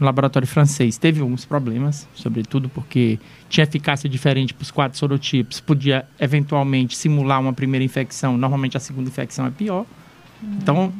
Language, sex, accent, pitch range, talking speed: Portuguese, male, Brazilian, 130-170 Hz, 155 wpm